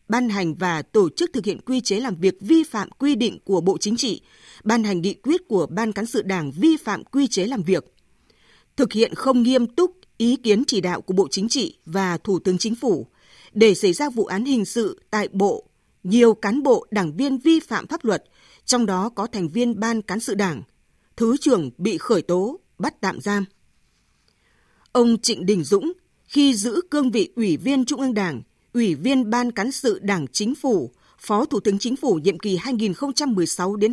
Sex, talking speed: female, 205 wpm